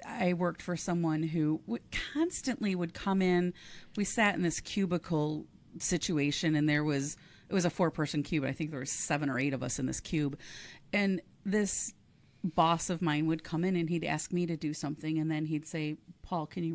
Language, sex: English, female